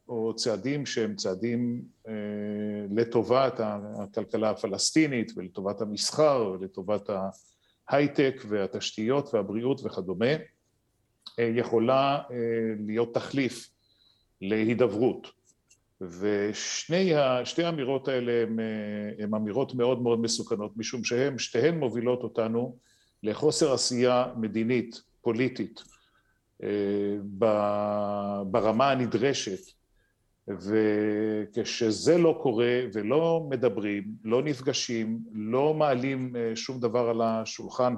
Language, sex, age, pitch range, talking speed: Hebrew, male, 40-59, 105-130 Hz, 85 wpm